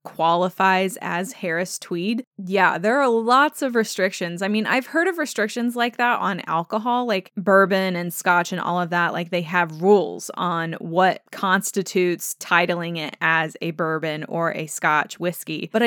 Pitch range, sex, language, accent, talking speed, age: 175-215 Hz, female, English, American, 170 wpm, 20-39